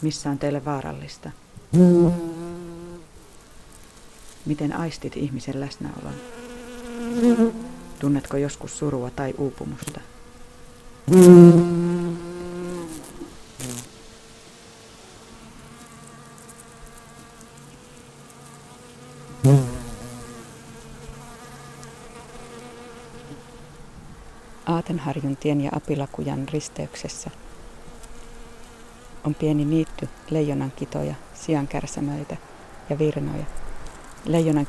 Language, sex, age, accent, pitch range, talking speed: Finnish, female, 40-59, native, 135-165 Hz, 45 wpm